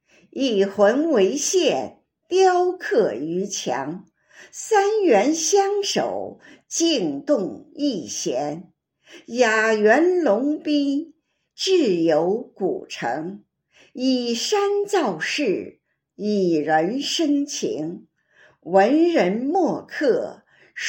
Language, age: Chinese, 50-69